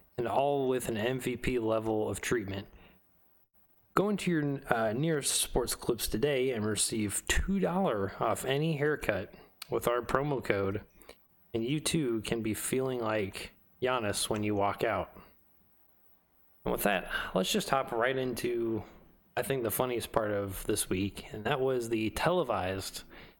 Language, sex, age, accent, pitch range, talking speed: English, male, 20-39, American, 100-125 Hz, 150 wpm